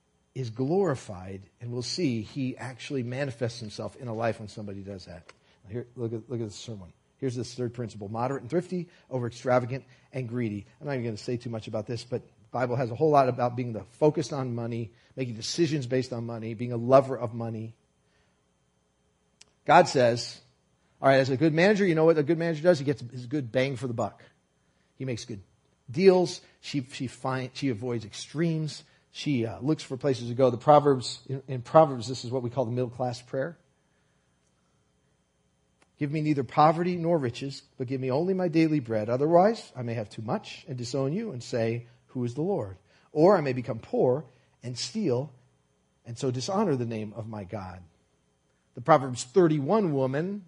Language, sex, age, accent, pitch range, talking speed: English, male, 40-59, American, 115-145 Hz, 195 wpm